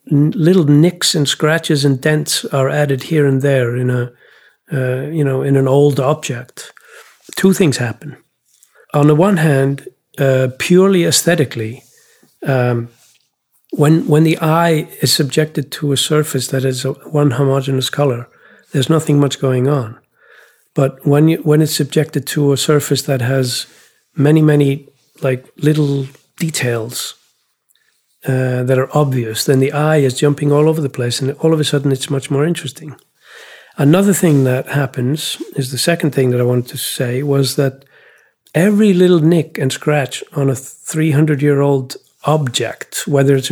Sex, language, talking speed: male, English, 165 wpm